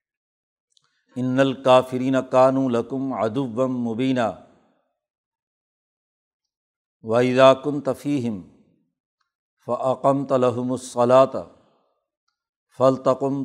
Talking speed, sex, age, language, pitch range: 55 wpm, male, 60-79, Urdu, 130-145 Hz